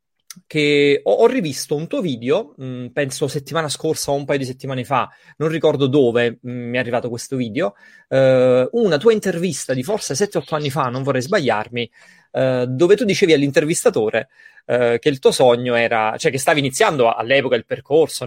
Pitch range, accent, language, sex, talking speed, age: 125-165 Hz, native, Italian, male, 165 wpm, 30-49